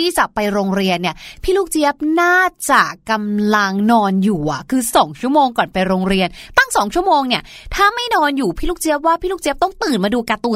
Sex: female